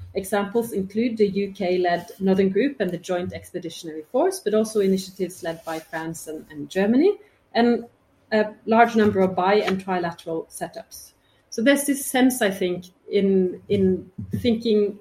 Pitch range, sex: 175-220 Hz, female